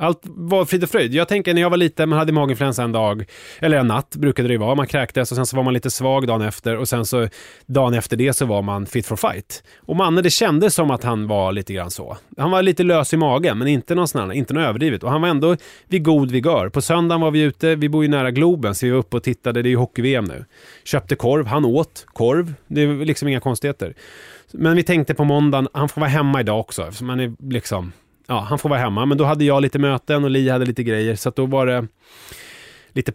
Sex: male